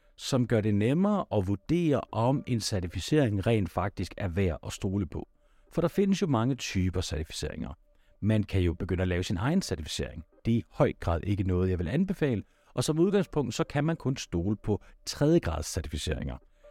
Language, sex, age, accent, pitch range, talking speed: Danish, male, 60-79, native, 90-130 Hz, 195 wpm